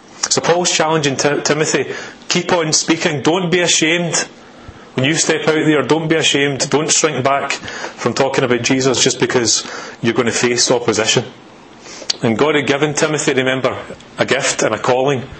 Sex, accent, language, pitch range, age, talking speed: male, British, English, 115-150 Hz, 30-49, 170 wpm